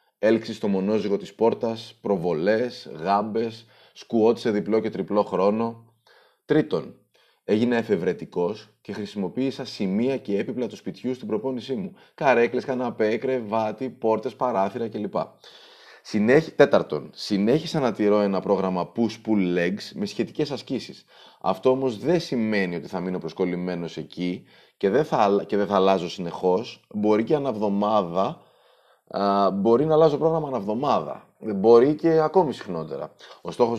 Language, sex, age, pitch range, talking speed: Greek, male, 30-49, 100-125 Hz, 130 wpm